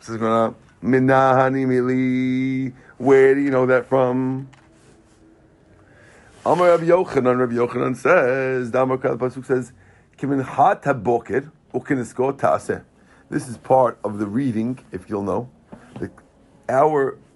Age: 50-69